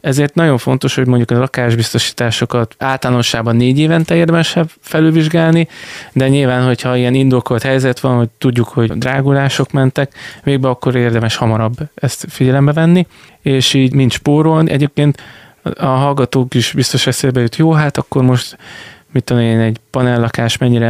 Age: 20-39